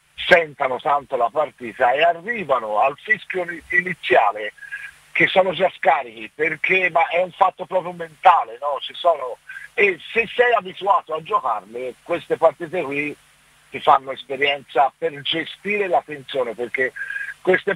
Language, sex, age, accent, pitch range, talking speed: Italian, male, 50-69, native, 160-215 Hz, 140 wpm